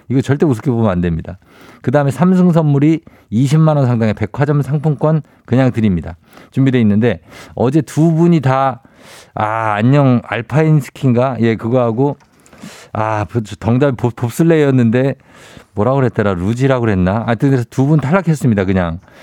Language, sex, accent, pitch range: Korean, male, native, 110-155 Hz